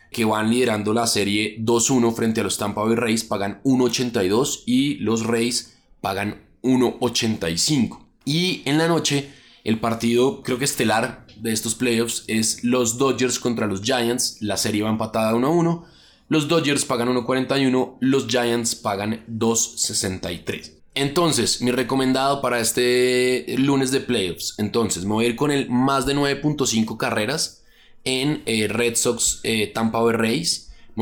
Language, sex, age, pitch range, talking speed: Spanish, male, 20-39, 110-130 Hz, 150 wpm